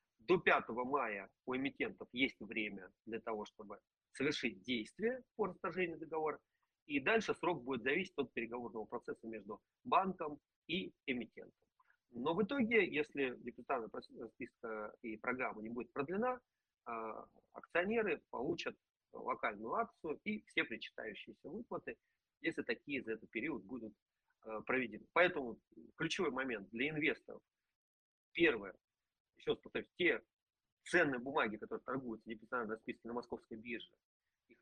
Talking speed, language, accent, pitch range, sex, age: 120 wpm, Russian, native, 110-180 Hz, male, 40-59